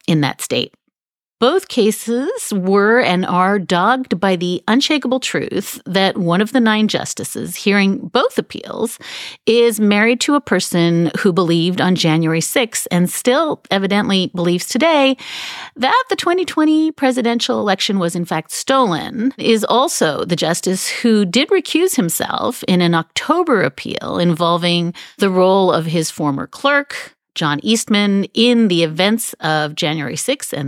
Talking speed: 145 wpm